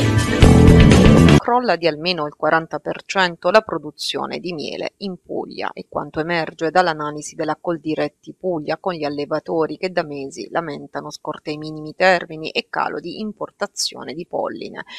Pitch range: 150-180 Hz